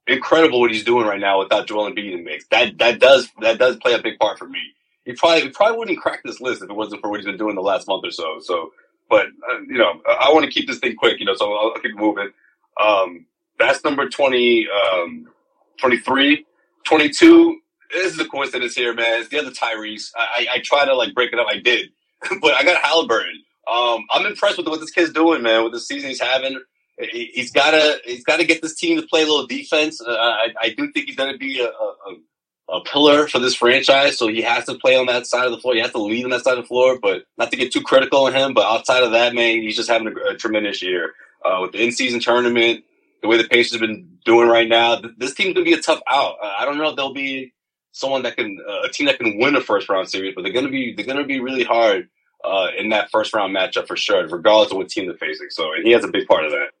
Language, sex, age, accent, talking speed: English, male, 30-49, American, 265 wpm